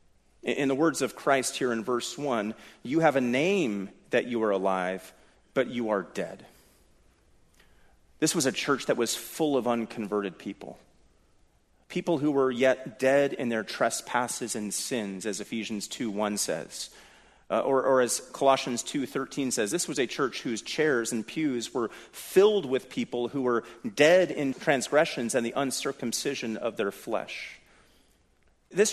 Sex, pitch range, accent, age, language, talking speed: male, 105-140 Hz, American, 40-59, English, 160 wpm